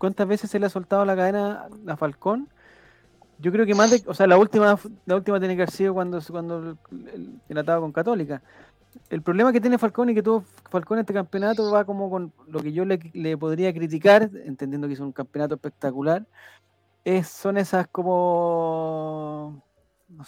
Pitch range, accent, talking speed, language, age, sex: 160-210 Hz, Argentinian, 190 wpm, Spanish, 30-49, male